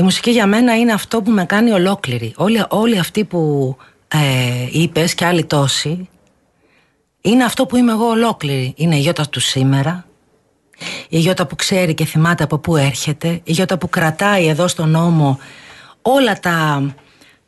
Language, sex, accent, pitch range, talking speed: Greek, female, native, 145-205 Hz, 195 wpm